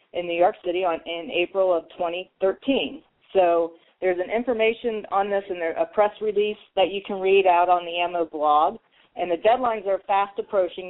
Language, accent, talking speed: English, American, 195 wpm